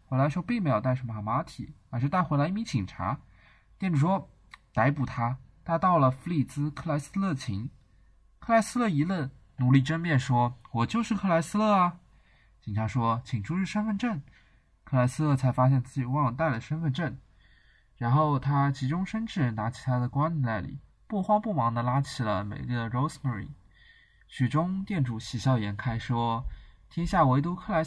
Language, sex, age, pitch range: Chinese, male, 20-39, 115-160 Hz